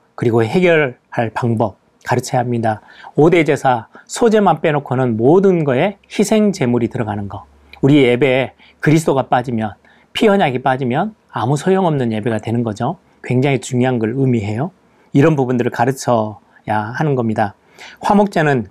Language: Korean